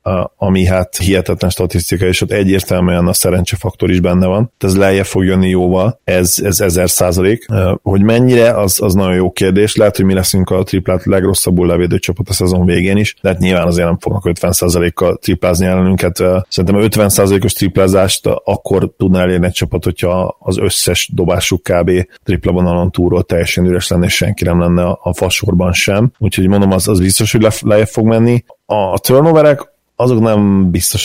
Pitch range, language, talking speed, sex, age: 90-100 Hz, Hungarian, 180 wpm, male, 30-49